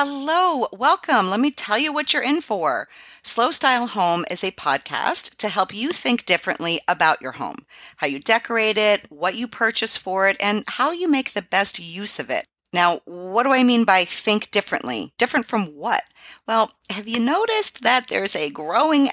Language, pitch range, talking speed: English, 170-230 Hz, 190 wpm